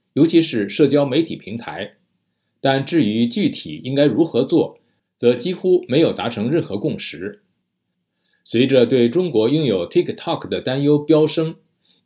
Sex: male